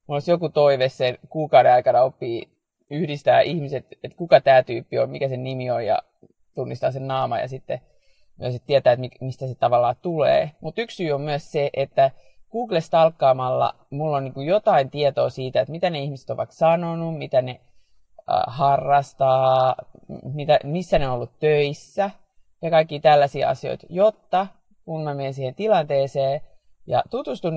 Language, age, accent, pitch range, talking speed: Finnish, 30-49, native, 130-160 Hz, 160 wpm